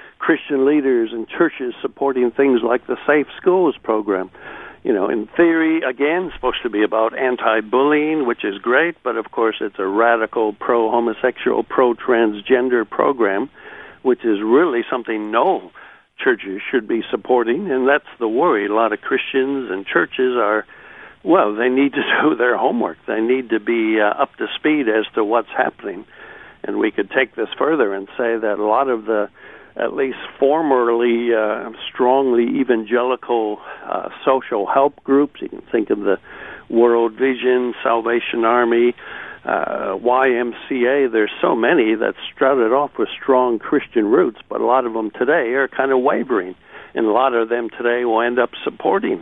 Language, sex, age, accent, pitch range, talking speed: English, male, 60-79, American, 115-135 Hz, 165 wpm